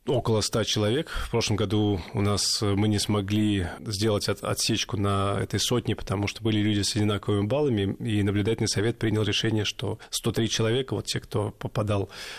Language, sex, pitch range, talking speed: Russian, male, 100-115 Hz, 170 wpm